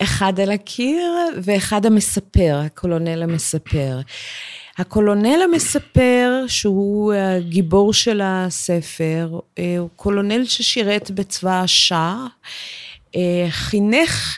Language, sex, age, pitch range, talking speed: Hebrew, female, 30-49, 165-210 Hz, 80 wpm